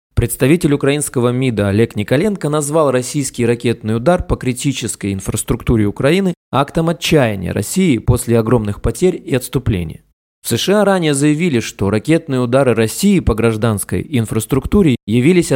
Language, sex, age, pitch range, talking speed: Russian, male, 20-39, 115-145 Hz, 125 wpm